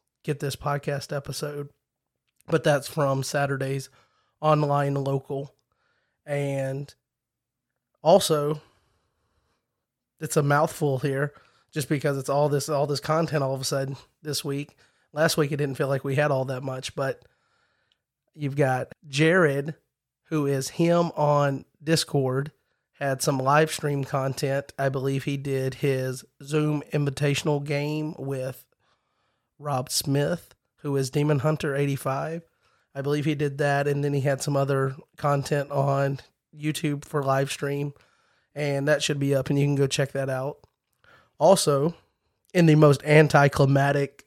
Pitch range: 135-150 Hz